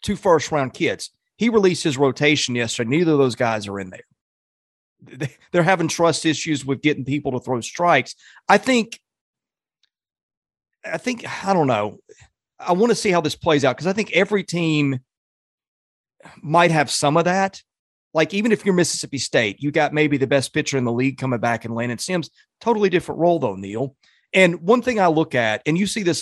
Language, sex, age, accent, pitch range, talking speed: English, male, 30-49, American, 130-175 Hz, 195 wpm